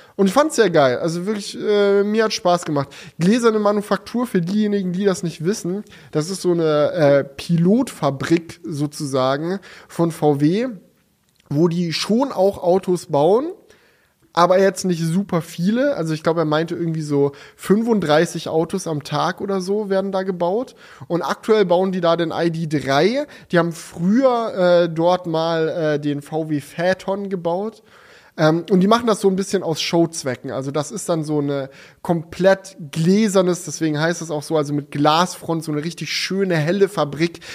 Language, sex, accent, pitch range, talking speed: German, male, German, 155-195 Hz, 170 wpm